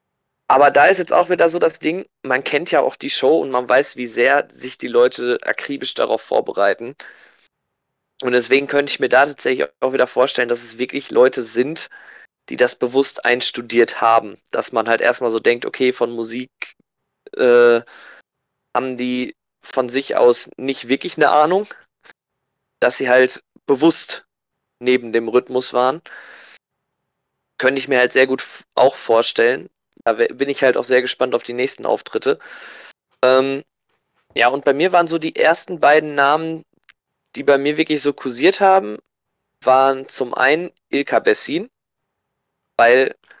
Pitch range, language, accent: 125-155 Hz, German, German